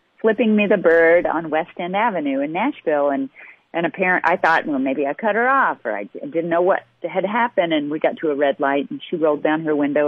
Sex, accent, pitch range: female, American, 150-190 Hz